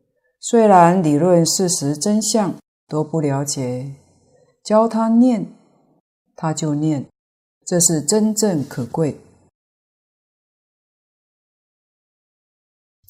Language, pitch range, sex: Chinese, 145-180 Hz, female